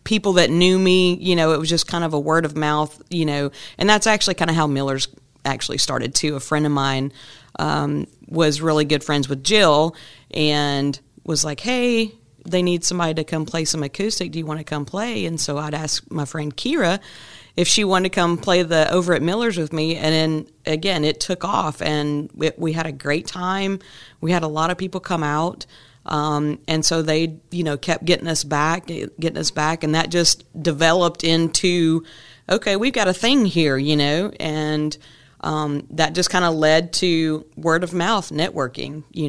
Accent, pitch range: American, 150-175 Hz